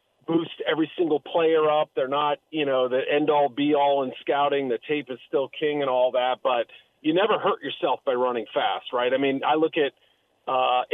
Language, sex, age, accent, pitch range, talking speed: English, male, 40-59, American, 135-170 Hz, 215 wpm